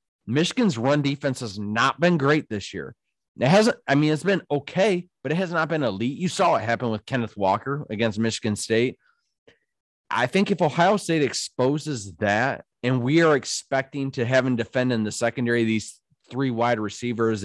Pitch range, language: 115-145 Hz, English